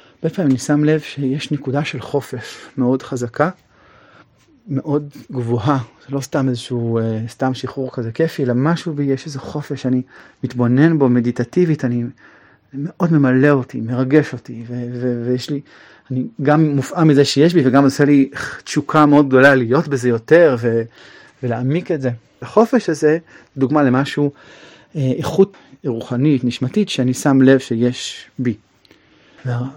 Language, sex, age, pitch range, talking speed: Hebrew, male, 30-49, 125-150 Hz, 150 wpm